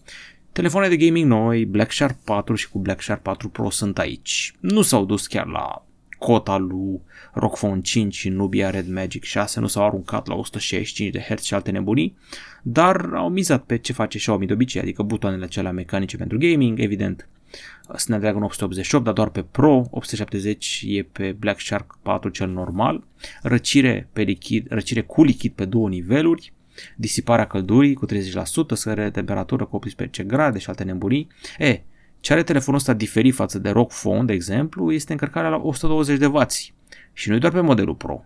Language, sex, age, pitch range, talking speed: Romanian, male, 30-49, 100-135 Hz, 175 wpm